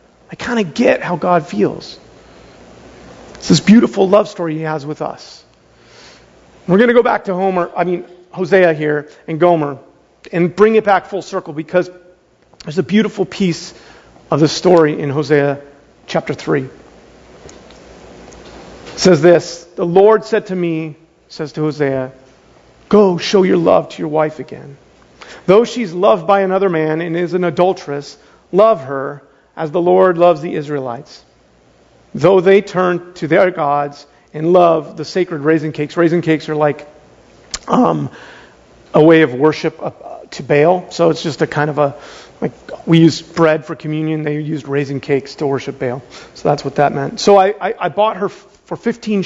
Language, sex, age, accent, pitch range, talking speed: English, male, 40-59, American, 150-185 Hz, 170 wpm